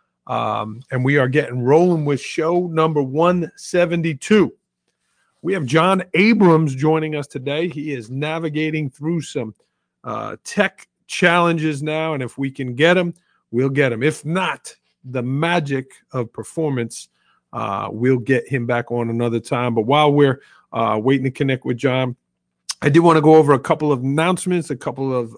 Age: 40-59